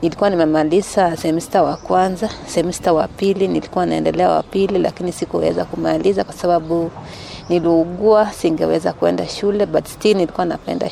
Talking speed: 130 wpm